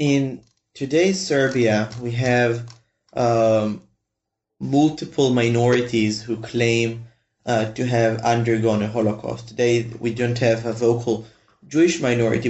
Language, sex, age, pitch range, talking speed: English, male, 20-39, 110-125 Hz, 115 wpm